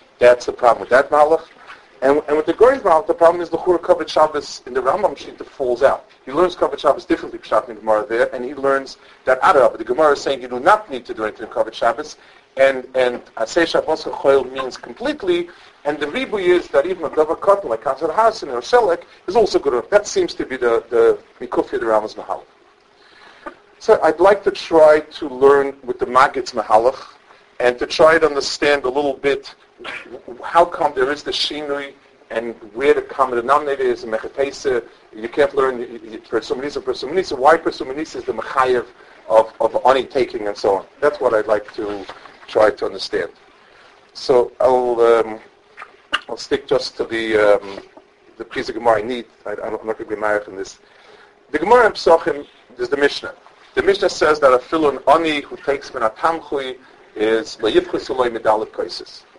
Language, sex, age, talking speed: English, male, 40-59, 195 wpm